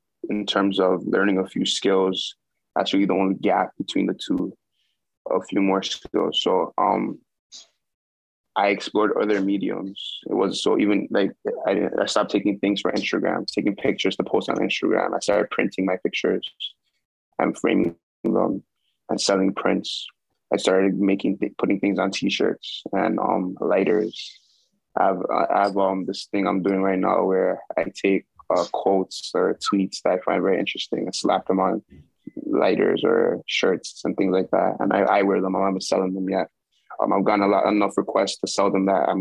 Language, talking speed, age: English, 180 wpm, 20-39